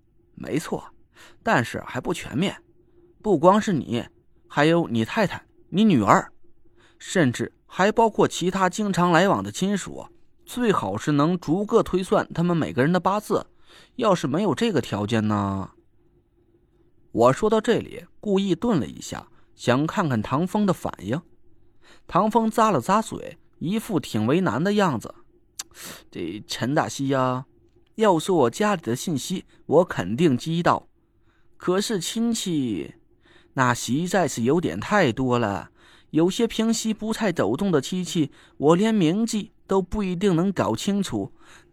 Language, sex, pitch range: Chinese, male, 140-210 Hz